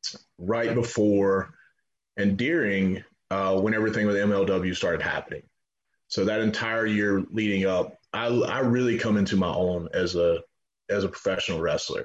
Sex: male